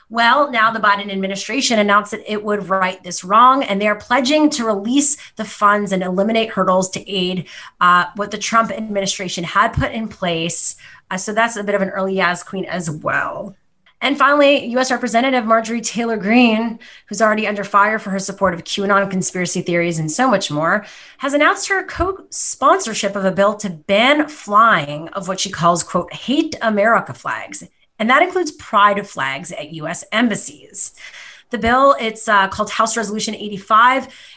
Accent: American